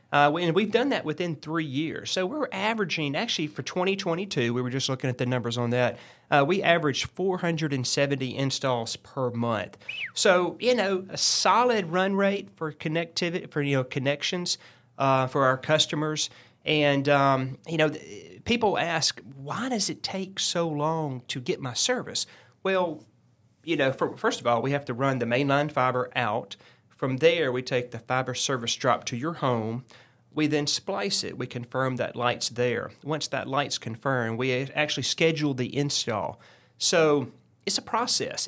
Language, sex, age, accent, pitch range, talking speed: English, male, 30-49, American, 125-170 Hz, 175 wpm